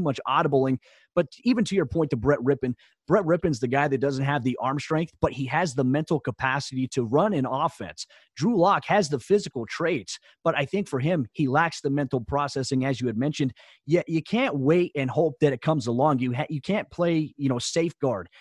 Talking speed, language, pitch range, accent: 220 wpm, English, 130-165 Hz, American